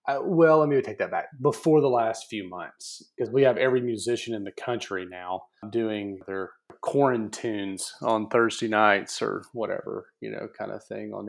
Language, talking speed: English, 185 wpm